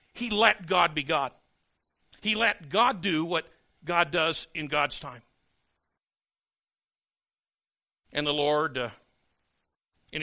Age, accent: 60-79, American